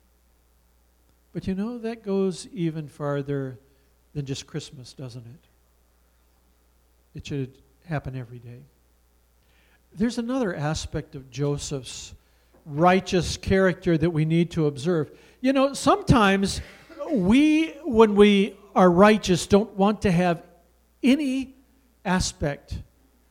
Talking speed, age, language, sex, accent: 110 wpm, 50-69, English, male, American